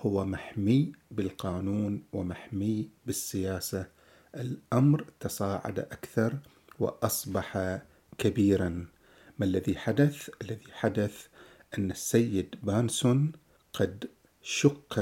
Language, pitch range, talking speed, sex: Arabic, 95-120 Hz, 80 wpm, male